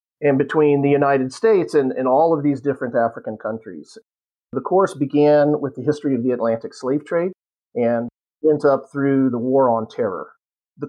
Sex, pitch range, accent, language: male, 130-160 Hz, American, English